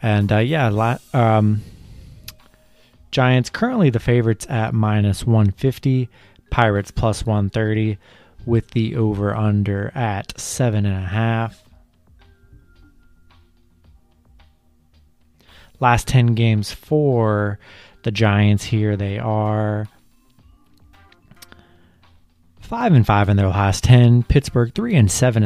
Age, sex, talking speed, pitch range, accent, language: 30-49, male, 100 wpm, 100-120 Hz, American, English